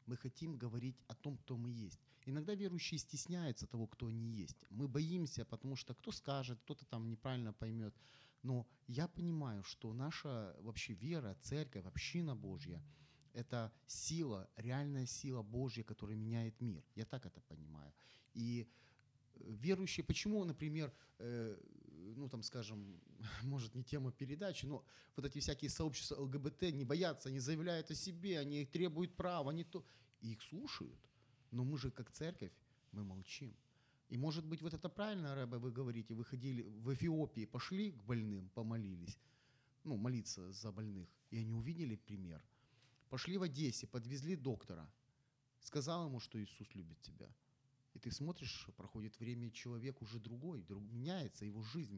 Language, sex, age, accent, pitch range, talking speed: Ukrainian, male, 30-49, native, 115-145 Hz, 155 wpm